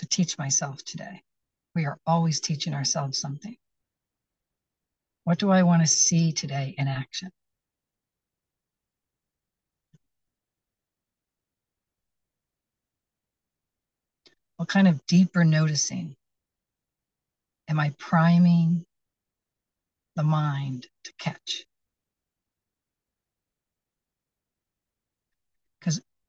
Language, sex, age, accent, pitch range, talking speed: English, female, 60-79, American, 145-175 Hz, 75 wpm